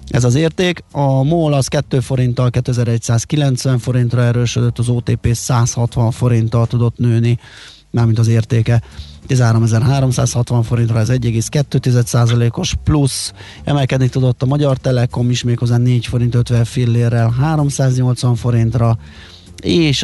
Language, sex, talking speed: Hungarian, male, 120 wpm